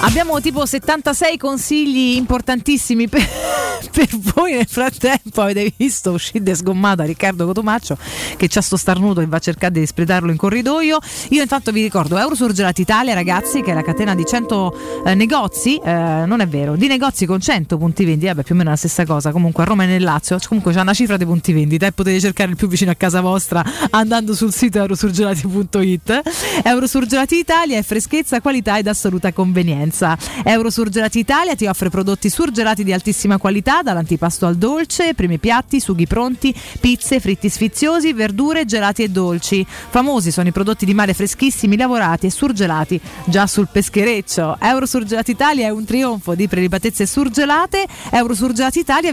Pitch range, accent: 185-255 Hz, native